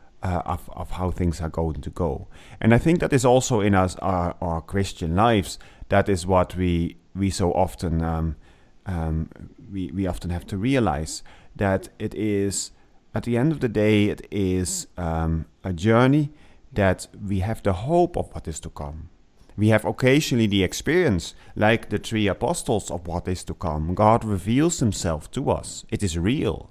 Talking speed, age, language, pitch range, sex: 185 wpm, 30-49, English, 85-110 Hz, male